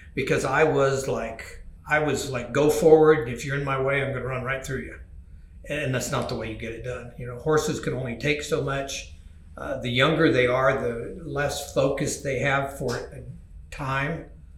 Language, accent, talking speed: English, American, 200 wpm